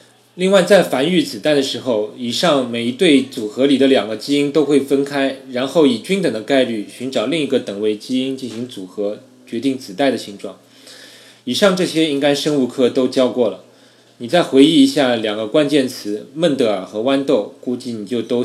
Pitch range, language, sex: 115-145 Hz, Chinese, male